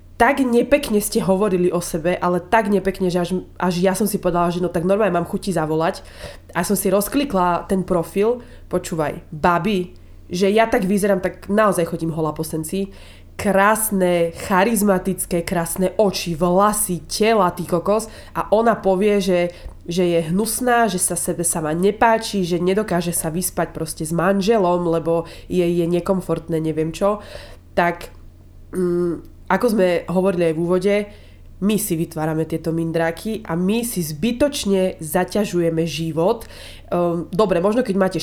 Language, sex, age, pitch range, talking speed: Slovak, female, 20-39, 170-200 Hz, 150 wpm